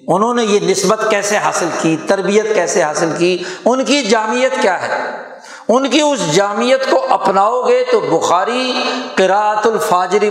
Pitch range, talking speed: 175-240 Hz, 155 wpm